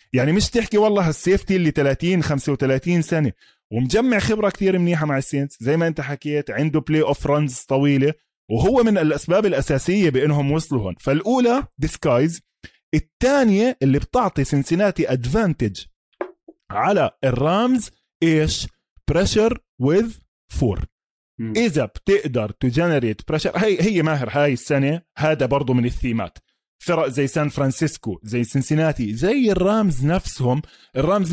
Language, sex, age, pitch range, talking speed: Arabic, male, 20-39, 135-190 Hz, 130 wpm